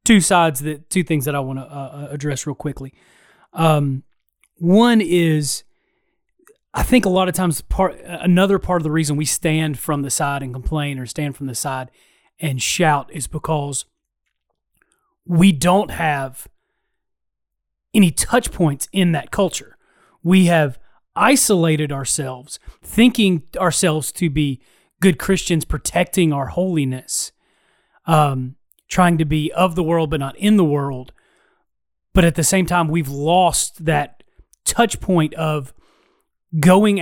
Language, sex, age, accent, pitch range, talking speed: English, male, 30-49, American, 145-185 Hz, 145 wpm